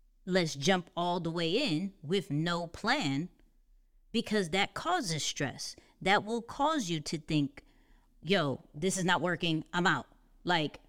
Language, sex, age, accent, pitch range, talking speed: English, female, 30-49, American, 155-200 Hz, 150 wpm